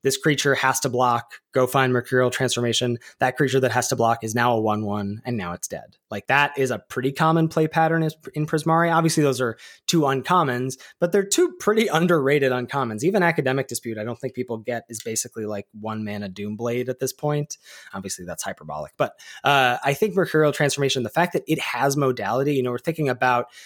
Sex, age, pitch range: male, 20-39, 125-170 Hz